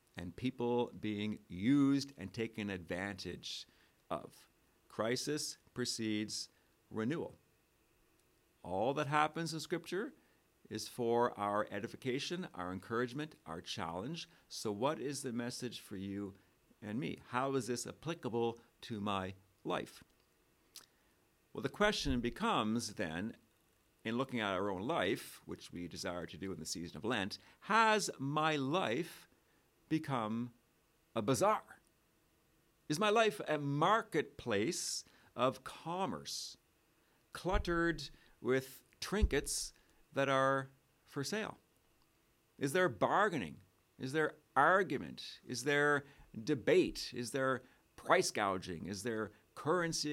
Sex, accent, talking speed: male, American, 115 wpm